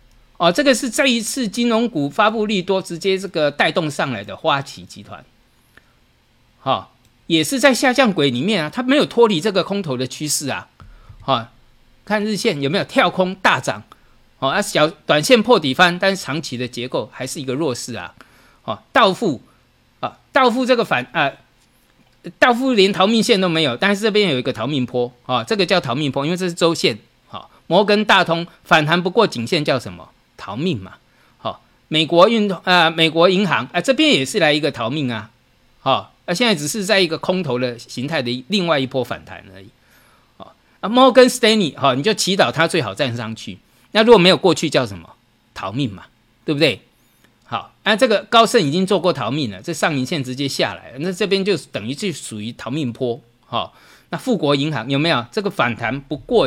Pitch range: 130-210 Hz